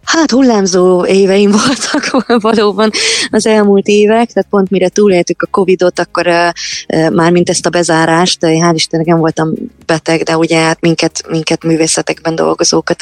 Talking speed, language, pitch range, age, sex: 165 wpm, Hungarian, 150-175 Hz, 20-39, female